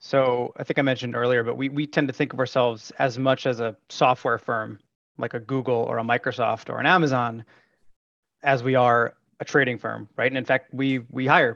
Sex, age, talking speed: male, 30-49, 220 wpm